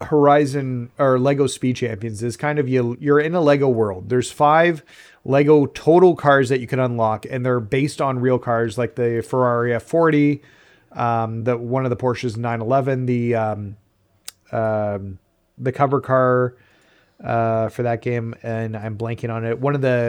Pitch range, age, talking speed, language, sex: 115-140 Hz, 30-49, 175 wpm, English, male